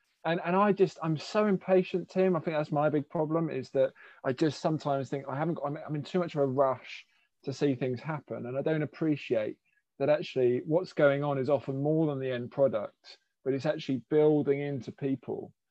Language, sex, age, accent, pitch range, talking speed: English, male, 20-39, British, 130-160 Hz, 215 wpm